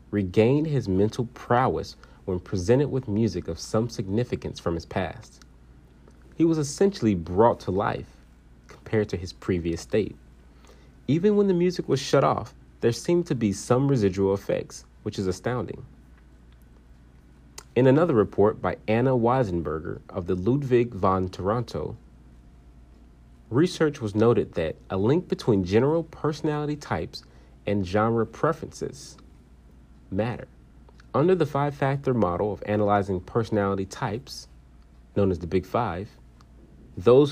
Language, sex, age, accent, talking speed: English, male, 40-59, American, 130 wpm